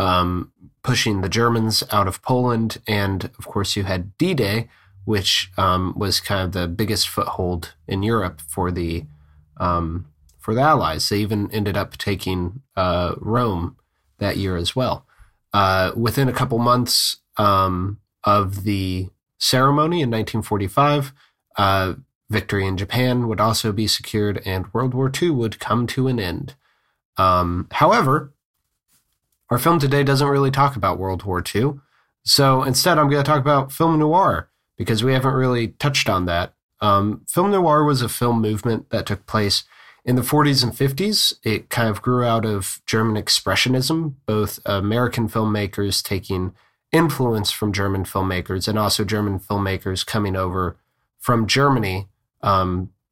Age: 30-49